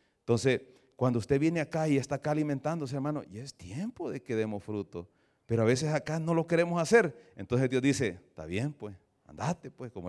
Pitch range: 95-140 Hz